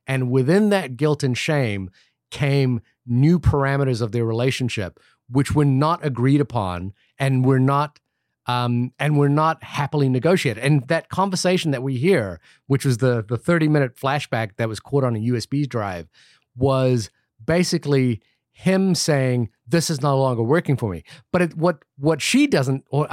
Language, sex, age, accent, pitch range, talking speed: English, male, 30-49, American, 130-175 Hz, 165 wpm